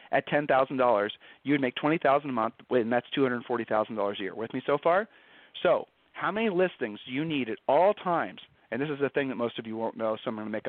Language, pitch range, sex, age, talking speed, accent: English, 120-145 Hz, male, 40-59, 230 wpm, American